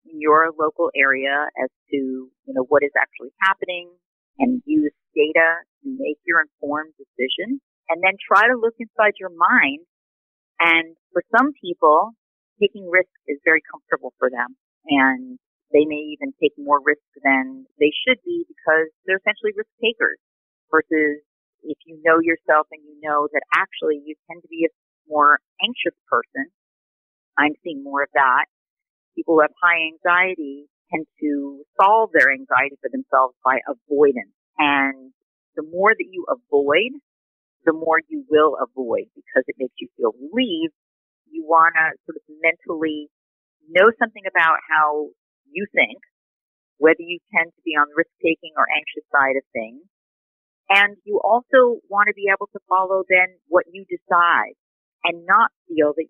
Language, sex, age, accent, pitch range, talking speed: English, female, 40-59, American, 150-210 Hz, 160 wpm